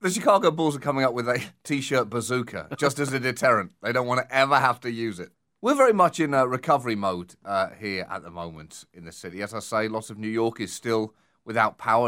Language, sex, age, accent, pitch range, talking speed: English, male, 30-49, British, 115-170 Hz, 245 wpm